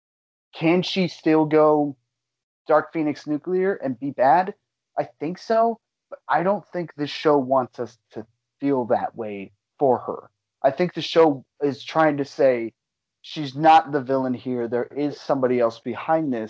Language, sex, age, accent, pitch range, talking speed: English, male, 30-49, American, 125-160 Hz, 165 wpm